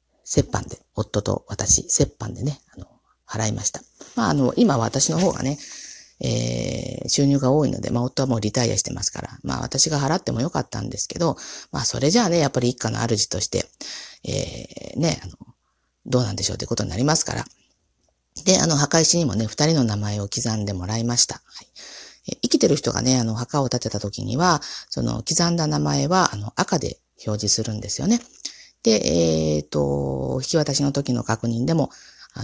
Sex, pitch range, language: female, 110-160 Hz, Japanese